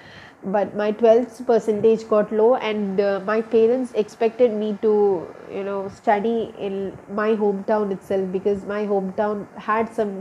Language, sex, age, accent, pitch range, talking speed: English, female, 20-39, Indian, 195-225 Hz, 145 wpm